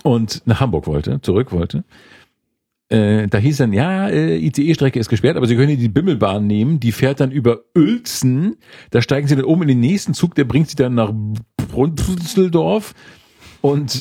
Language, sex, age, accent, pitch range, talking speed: German, male, 50-69, German, 110-145 Hz, 185 wpm